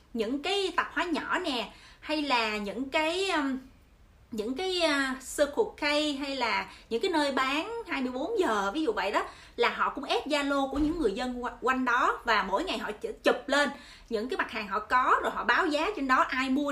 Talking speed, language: 210 wpm, Vietnamese